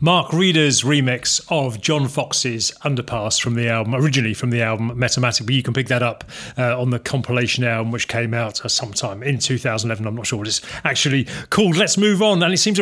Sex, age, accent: male, 40-59, British